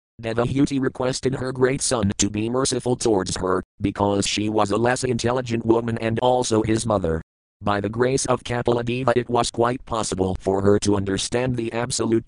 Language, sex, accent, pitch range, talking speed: English, male, American, 100-120 Hz, 175 wpm